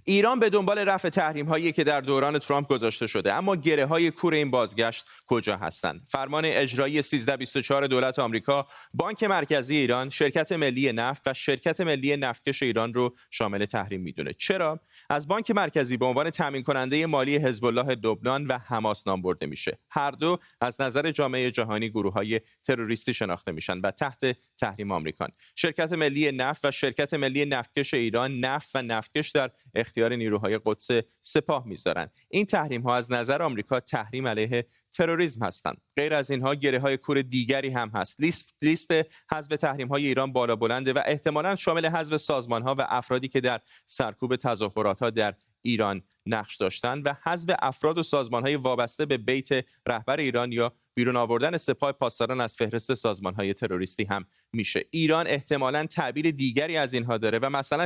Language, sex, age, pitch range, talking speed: Persian, male, 30-49, 115-150 Hz, 170 wpm